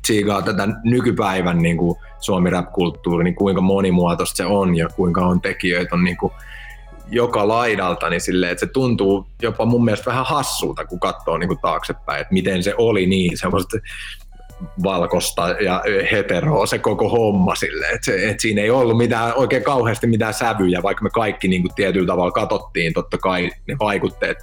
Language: Finnish